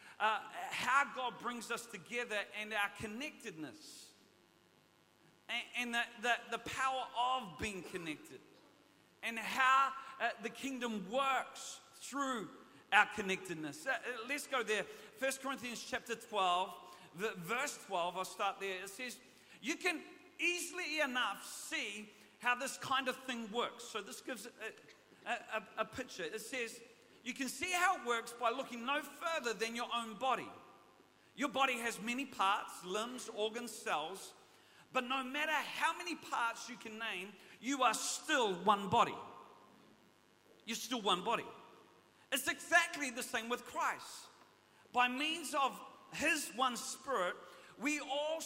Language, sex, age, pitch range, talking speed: English, male, 40-59, 225-280 Hz, 145 wpm